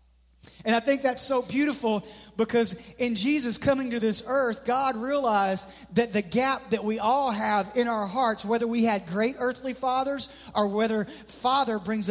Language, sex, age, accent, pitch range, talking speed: English, male, 40-59, American, 200-245 Hz, 175 wpm